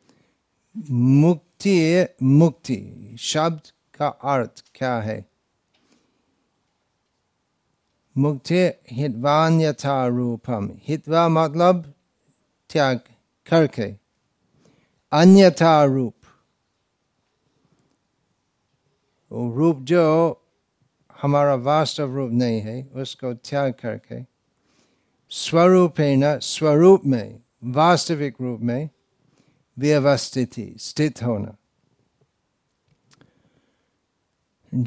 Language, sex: Hindi, male